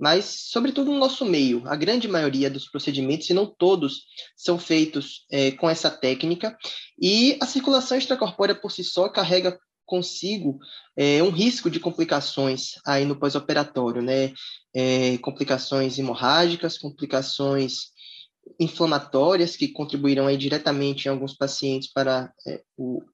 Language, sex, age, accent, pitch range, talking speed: Portuguese, male, 20-39, Brazilian, 140-185 Hz, 130 wpm